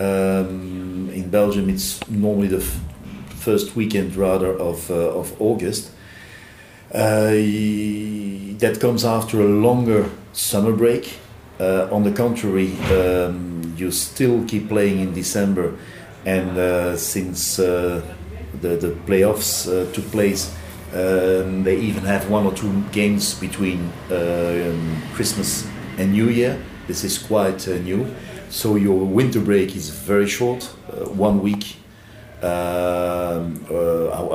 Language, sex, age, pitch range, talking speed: Danish, male, 50-69, 95-105 Hz, 130 wpm